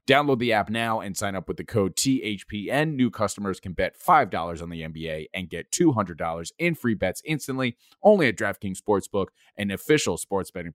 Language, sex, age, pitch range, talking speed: English, male, 30-49, 90-115 Hz, 190 wpm